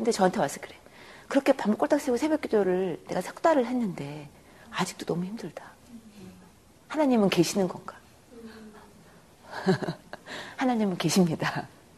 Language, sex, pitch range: Korean, female, 175-245 Hz